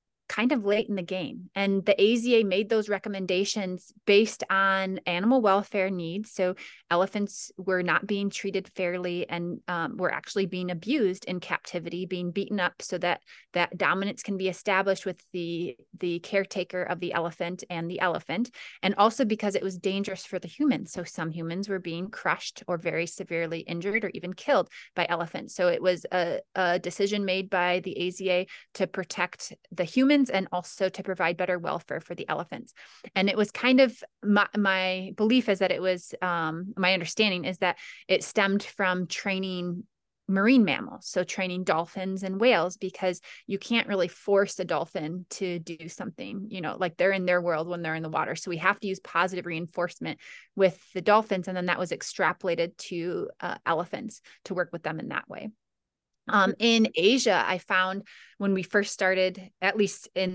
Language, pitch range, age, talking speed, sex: English, 180-200 Hz, 20-39, 185 wpm, female